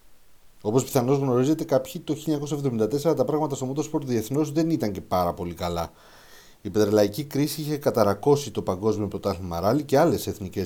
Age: 30-49